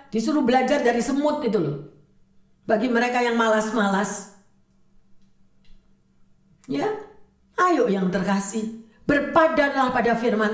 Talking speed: 95 wpm